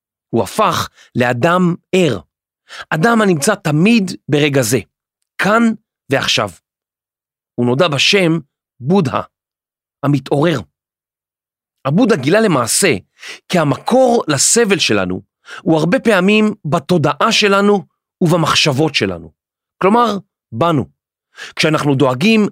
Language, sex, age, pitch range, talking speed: Hebrew, male, 40-59, 135-200 Hz, 90 wpm